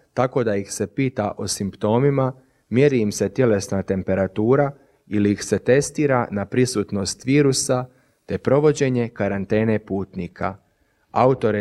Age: 30-49